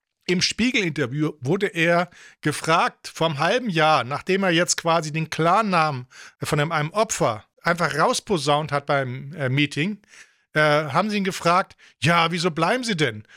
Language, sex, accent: English, male, German